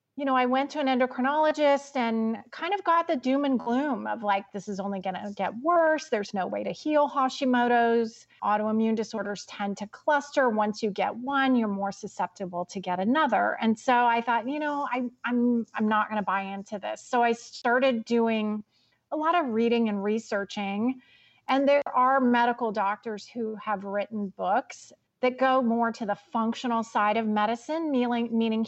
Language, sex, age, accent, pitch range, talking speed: English, female, 30-49, American, 205-255 Hz, 185 wpm